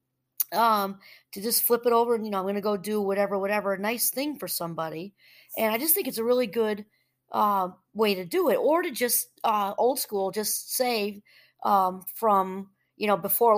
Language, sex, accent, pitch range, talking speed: English, female, American, 195-240 Hz, 210 wpm